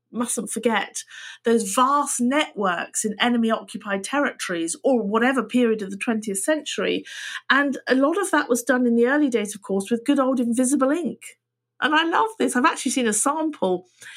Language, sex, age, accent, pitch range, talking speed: English, female, 50-69, British, 205-260 Hz, 180 wpm